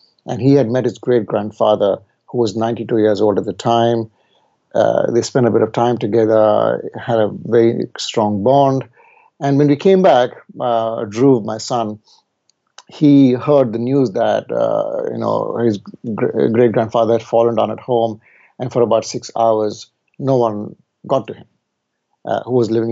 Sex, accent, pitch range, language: male, Indian, 110-125 Hz, English